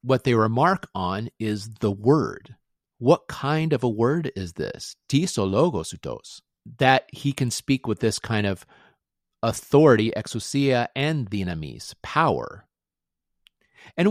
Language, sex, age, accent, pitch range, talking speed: English, male, 40-59, American, 105-140 Hz, 125 wpm